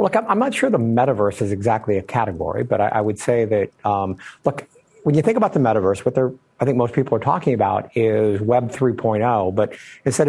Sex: male